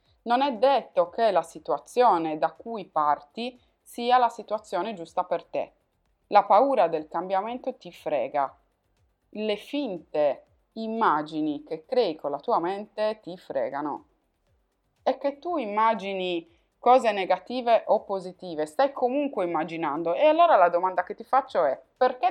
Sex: female